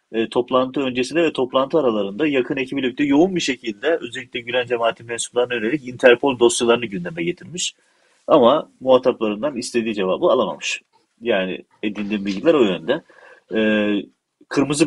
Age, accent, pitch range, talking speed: 40-59, native, 105-130 Hz, 130 wpm